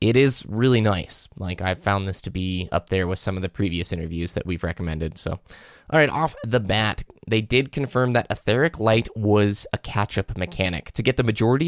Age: 20-39